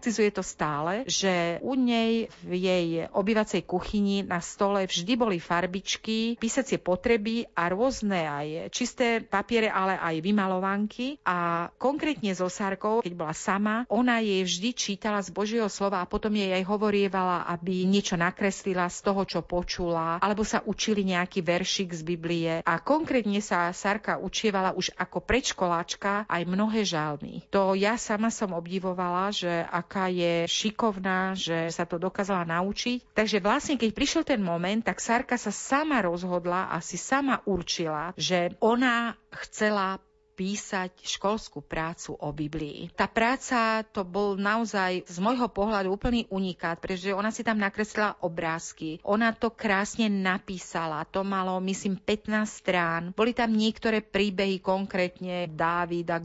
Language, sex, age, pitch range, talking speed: Slovak, female, 40-59, 180-215 Hz, 145 wpm